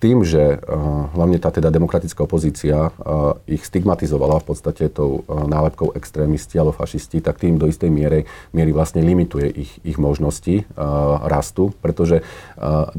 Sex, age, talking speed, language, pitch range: male, 40-59, 155 wpm, Slovak, 75-85 Hz